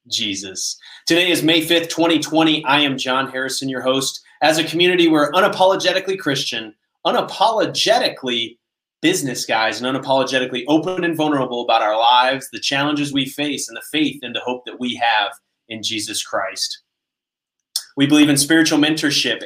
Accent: American